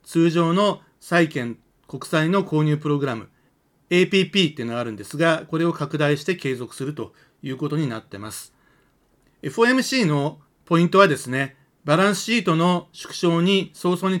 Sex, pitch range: male, 135-180 Hz